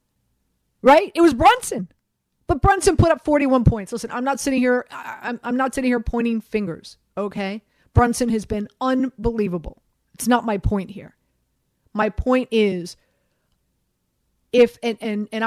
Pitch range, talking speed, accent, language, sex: 205-265 Hz, 155 wpm, American, English, female